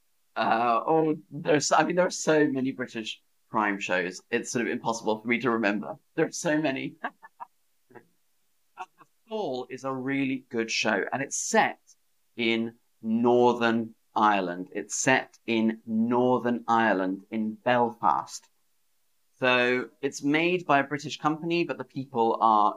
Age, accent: 30-49, British